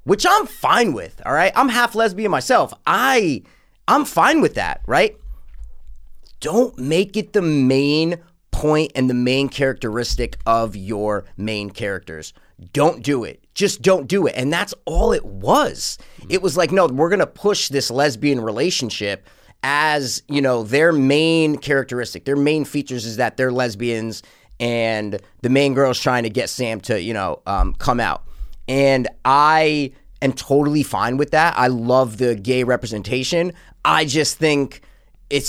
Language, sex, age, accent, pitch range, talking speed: English, male, 30-49, American, 125-205 Hz, 160 wpm